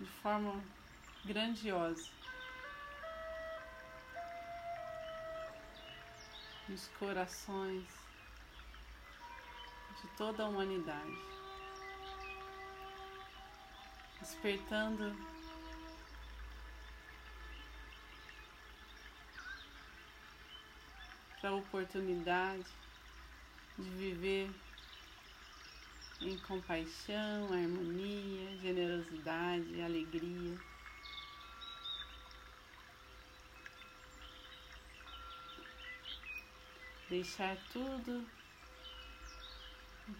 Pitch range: 175-245 Hz